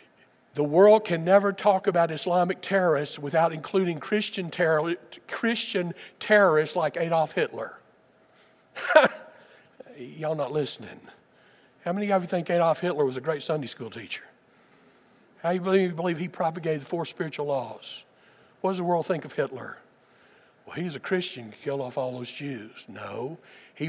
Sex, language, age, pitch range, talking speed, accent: male, English, 60-79, 130-170 Hz, 160 wpm, American